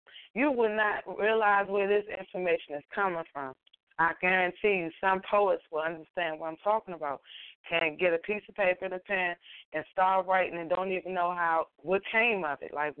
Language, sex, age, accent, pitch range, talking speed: English, female, 20-39, American, 160-200 Hz, 200 wpm